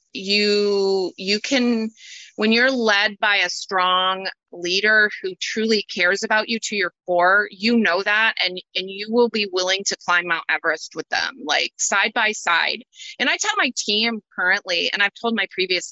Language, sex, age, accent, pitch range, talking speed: English, female, 30-49, American, 180-225 Hz, 180 wpm